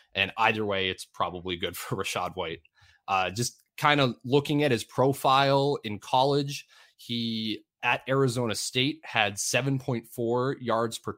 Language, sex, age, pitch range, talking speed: English, male, 20-39, 100-135 Hz, 145 wpm